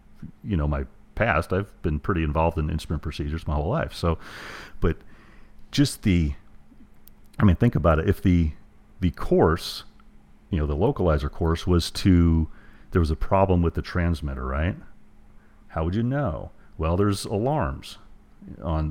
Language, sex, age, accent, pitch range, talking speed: English, male, 40-59, American, 80-100 Hz, 160 wpm